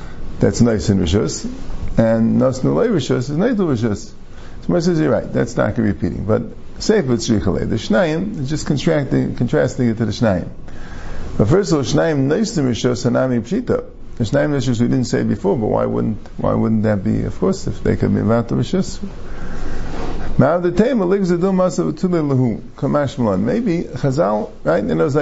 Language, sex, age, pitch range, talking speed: English, male, 50-69, 110-150 Hz, 185 wpm